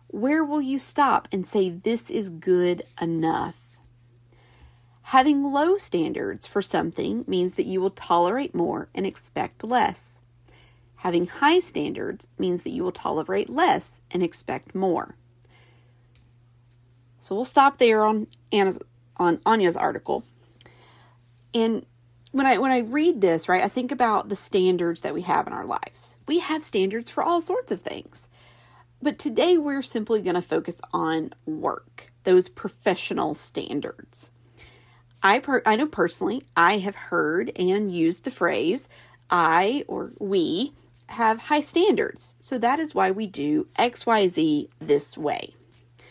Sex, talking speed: female, 145 wpm